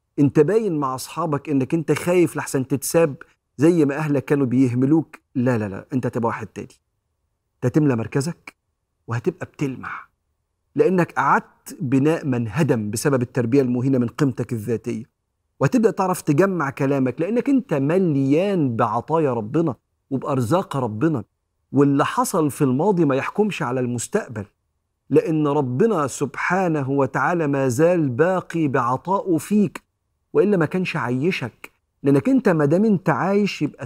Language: Arabic